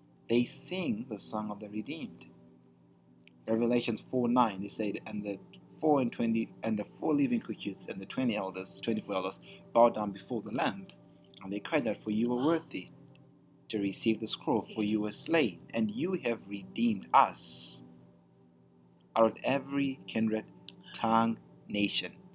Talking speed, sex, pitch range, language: 165 wpm, male, 90-120 Hz, English